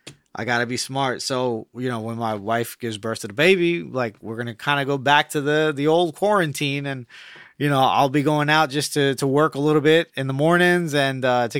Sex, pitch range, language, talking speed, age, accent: male, 130-165 Hz, English, 255 wpm, 20-39, American